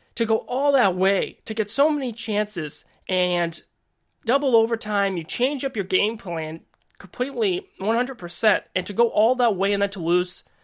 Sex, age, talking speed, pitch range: male, 20-39, 175 wpm, 175-225 Hz